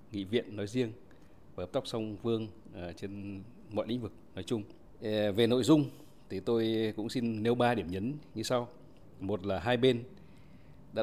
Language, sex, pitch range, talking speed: Vietnamese, male, 100-120 Hz, 180 wpm